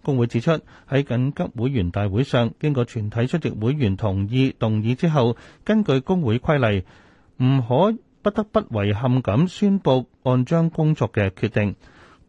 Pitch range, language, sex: 105-150 Hz, Chinese, male